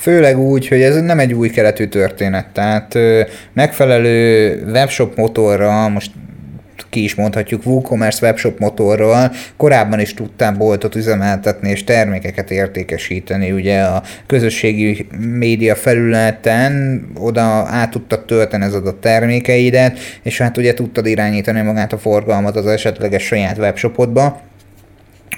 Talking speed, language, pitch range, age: 125 wpm, Hungarian, 105-125 Hz, 30-49